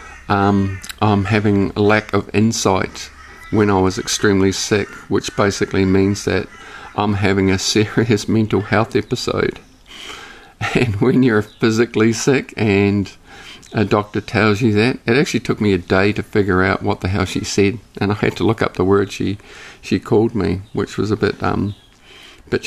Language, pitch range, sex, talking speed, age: English, 100-115 Hz, male, 175 wpm, 50-69